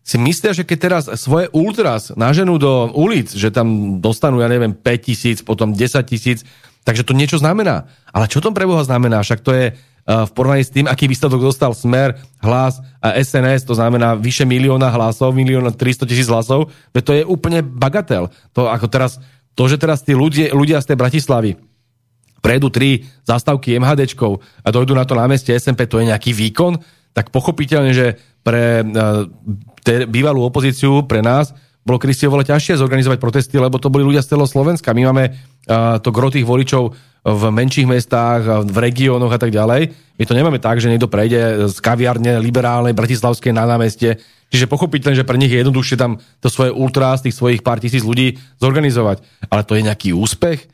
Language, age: Slovak, 40-59